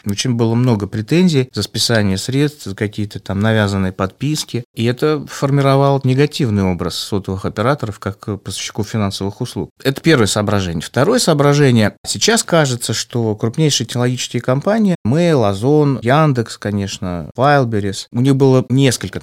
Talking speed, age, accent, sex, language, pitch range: 135 wpm, 30-49, native, male, Russian, 105-135 Hz